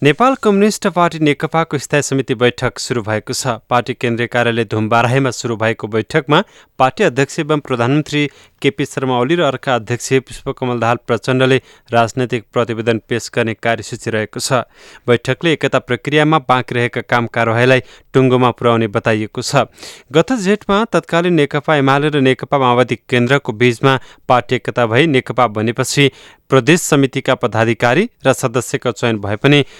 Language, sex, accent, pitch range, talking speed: English, male, Indian, 120-145 Hz, 95 wpm